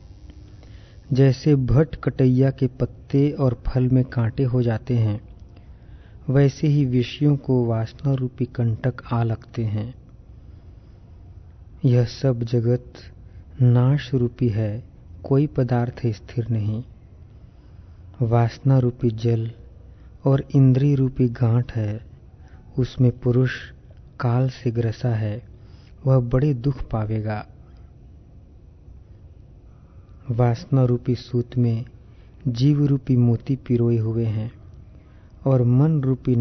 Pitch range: 105-130 Hz